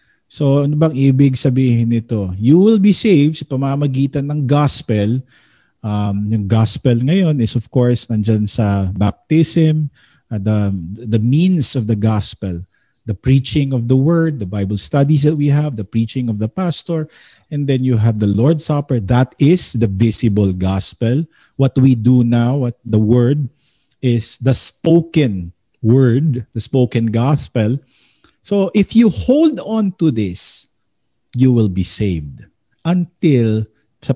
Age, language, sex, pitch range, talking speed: 50-69, Filipino, male, 110-145 Hz, 150 wpm